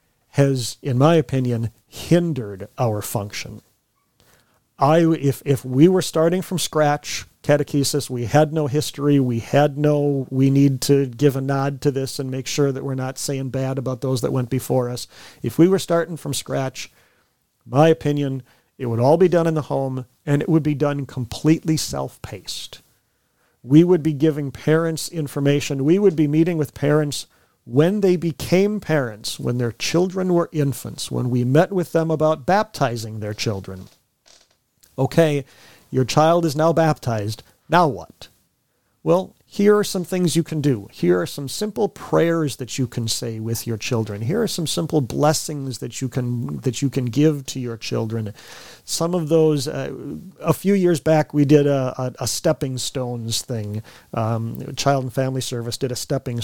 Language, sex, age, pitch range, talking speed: English, male, 40-59, 125-160 Hz, 175 wpm